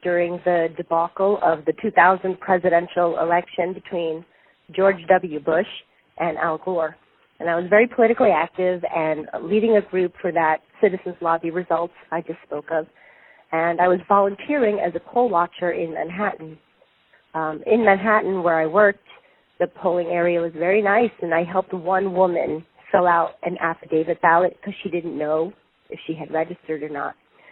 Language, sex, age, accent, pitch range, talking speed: English, female, 30-49, American, 165-205 Hz, 165 wpm